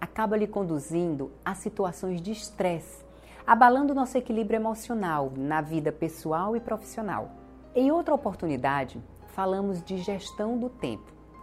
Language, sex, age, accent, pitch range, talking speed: Portuguese, female, 40-59, Brazilian, 155-220 Hz, 125 wpm